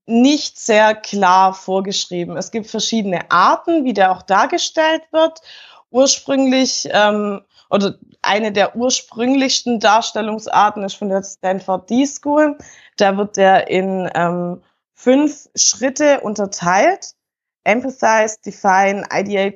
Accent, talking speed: German, 110 wpm